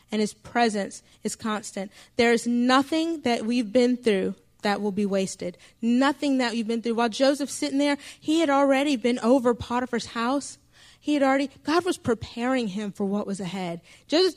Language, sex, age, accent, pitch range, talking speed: English, female, 30-49, American, 215-260 Hz, 185 wpm